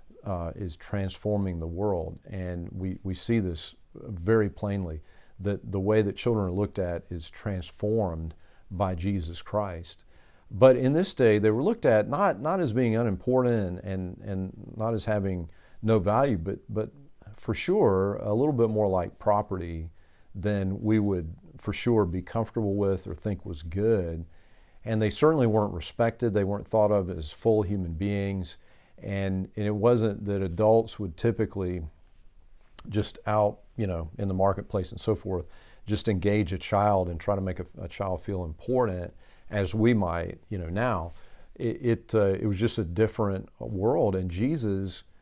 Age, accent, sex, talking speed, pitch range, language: 40-59, American, male, 170 wpm, 90-110 Hz, English